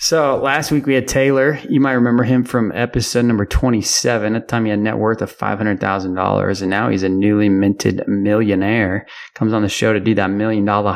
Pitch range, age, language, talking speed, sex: 100-115 Hz, 20-39, English, 220 wpm, male